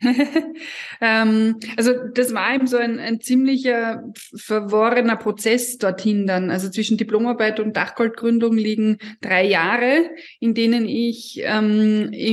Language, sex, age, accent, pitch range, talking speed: German, female, 20-39, German, 205-235 Hz, 115 wpm